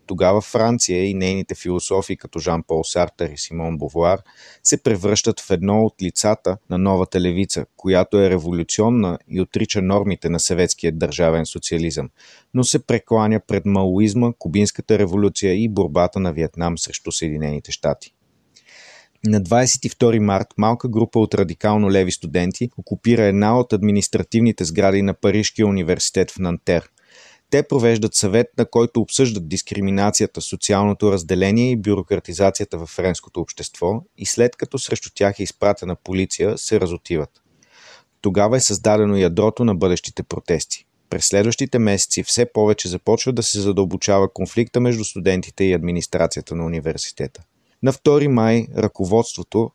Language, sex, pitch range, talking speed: Bulgarian, male, 90-110 Hz, 140 wpm